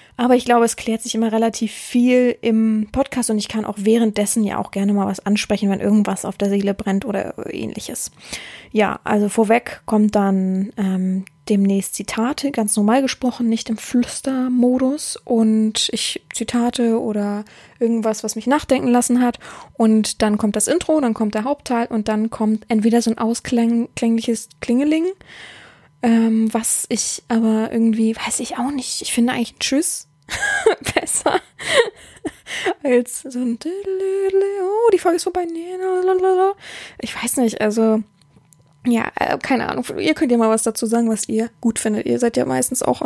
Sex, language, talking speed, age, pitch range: female, German, 160 wpm, 20-39, 220-255 Hz